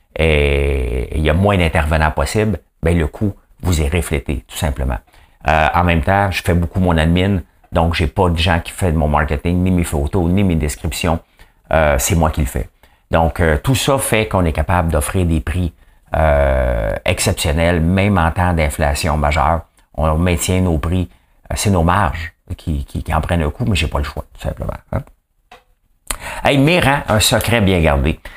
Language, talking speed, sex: English, 195 wpm, male